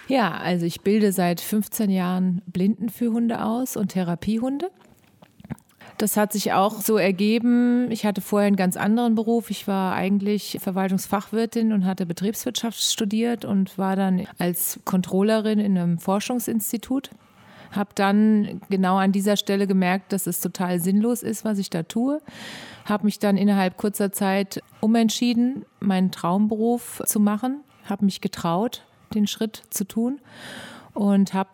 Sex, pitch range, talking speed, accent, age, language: female, 190-225 Hz, 150 wpm, German, 30-49, German